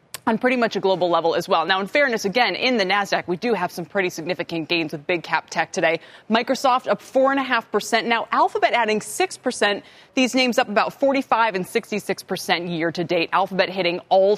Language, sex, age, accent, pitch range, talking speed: English, female, 20-39, American, 175-240 Hz, 195 wpm